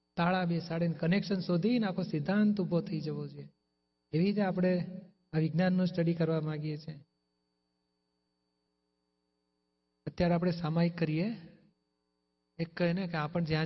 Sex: male